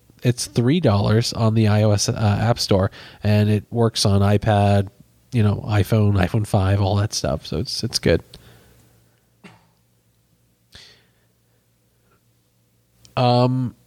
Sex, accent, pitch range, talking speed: male, American, 100-125 Hz, 115 wpm